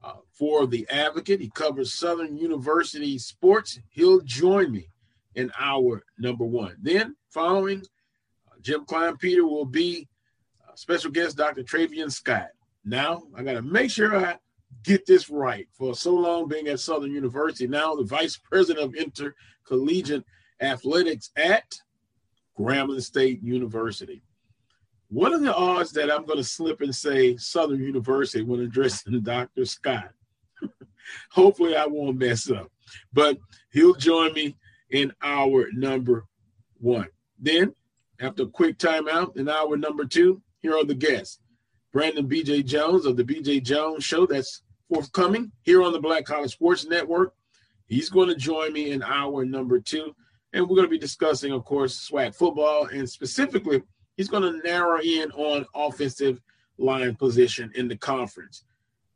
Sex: male